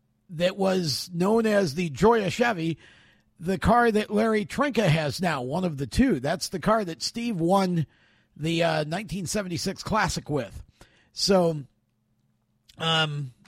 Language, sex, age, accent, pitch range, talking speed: English, male, 50-69, American, 160-210 Hz, 140 wpm